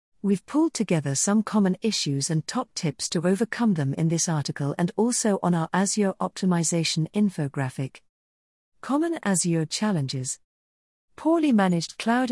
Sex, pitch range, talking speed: female, 150-210 Hz, 135 wpm